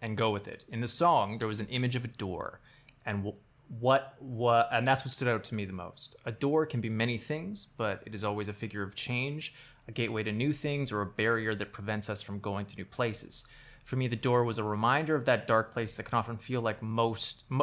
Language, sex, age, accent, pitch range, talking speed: English, male, 20-39, American, 110-135 Hz, 250 wpm